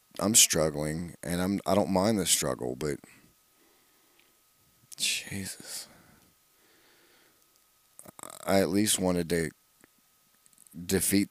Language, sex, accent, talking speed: English, male, American, 90 wpm